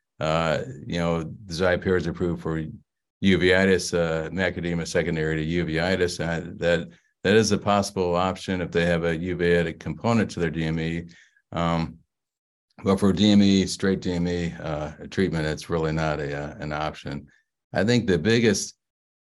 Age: 50-69